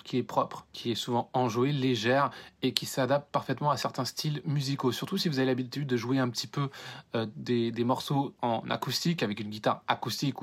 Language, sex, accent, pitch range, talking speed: French, male, French, 125-160 Hz, 205 wpm